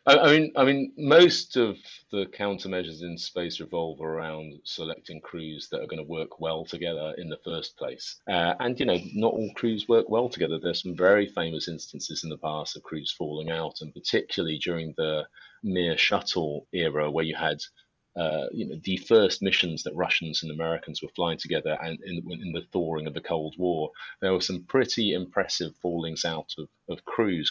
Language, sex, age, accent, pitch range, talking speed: English, male, 30-49, British, 80-110 Hz, 190 wpm